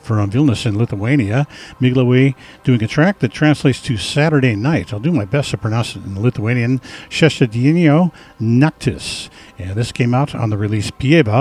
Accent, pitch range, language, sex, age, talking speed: American, 110-145 Hz, English, male, 50-69, 170 wpm